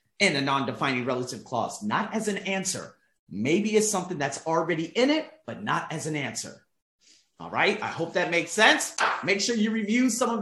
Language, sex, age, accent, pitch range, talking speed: English, male, 30-49, American, 145-225 Hz, 195 wpm